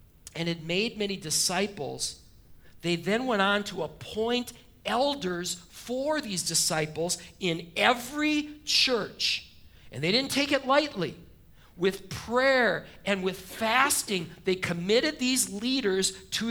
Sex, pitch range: male, 190-265 Hz